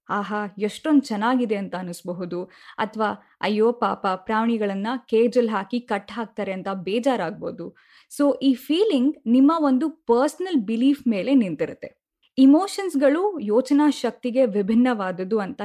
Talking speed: 115 wpm